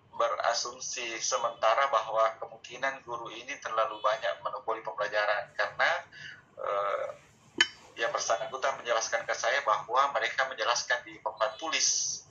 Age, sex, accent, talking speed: 30-49, male, native, 110 wpm